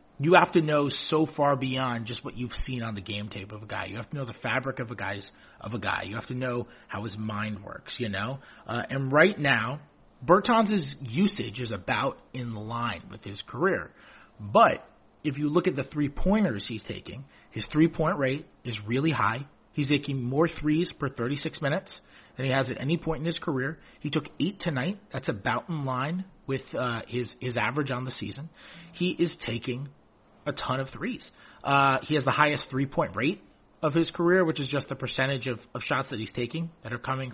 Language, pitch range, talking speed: English, 120-160 Hz, 210 wpm